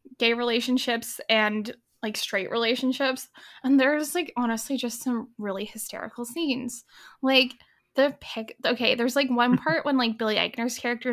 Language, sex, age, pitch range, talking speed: English, female, 10-29, 230-280 Hz, 150 wpm